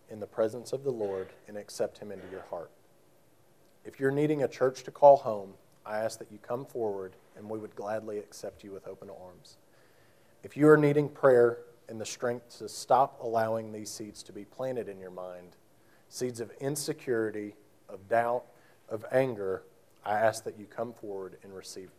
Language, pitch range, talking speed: English, 105-130 Hz, 190 wpm